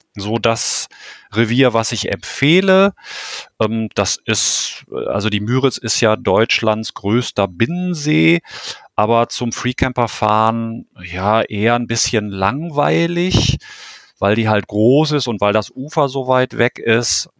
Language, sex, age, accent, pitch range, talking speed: German, male, 40-59, German, 100-120 Hz, 130 wpm